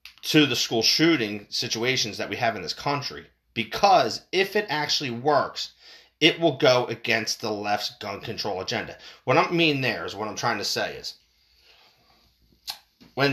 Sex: male